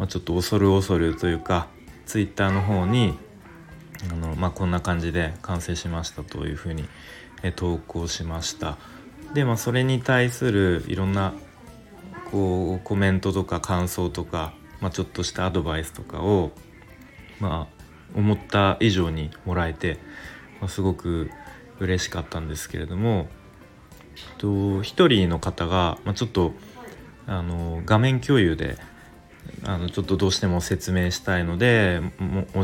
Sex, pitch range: male, 85-105 Hz